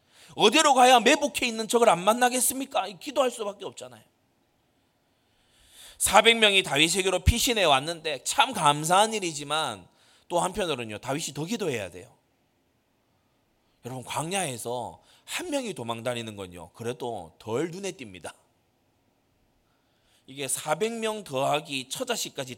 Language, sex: Korean, male